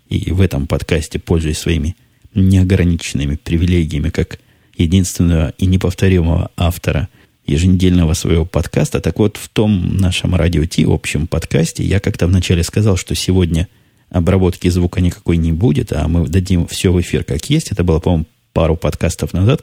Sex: male